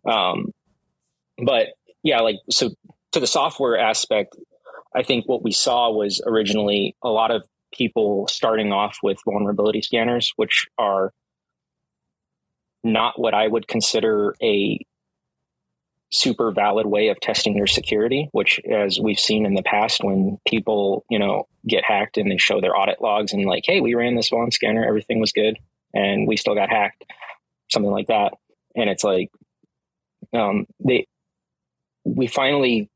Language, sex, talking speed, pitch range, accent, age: English, male, 155 wpm, 105-120 Hz, American, 20-39